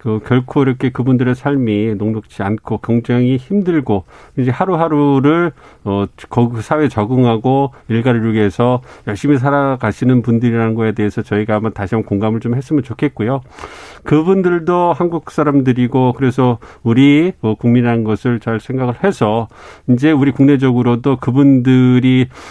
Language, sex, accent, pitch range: Korean, male, native, 110-130 Hz